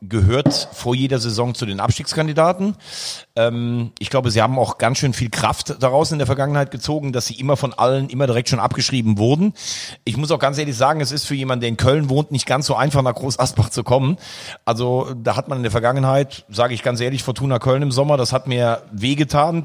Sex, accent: male, German